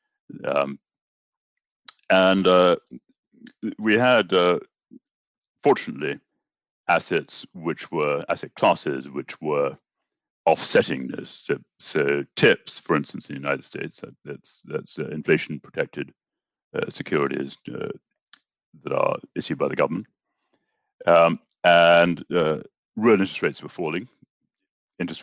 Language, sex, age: English, male, 60-79